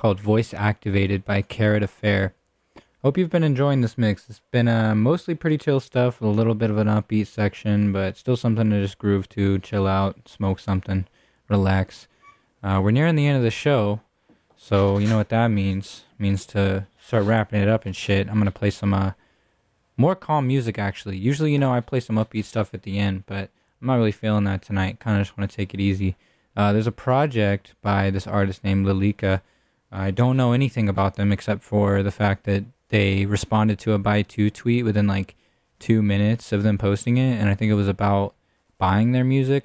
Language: English